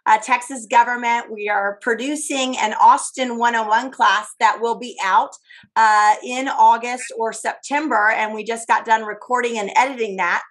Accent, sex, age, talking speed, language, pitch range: American, female, 30-49, 160 wpm, English, 225-290 Hz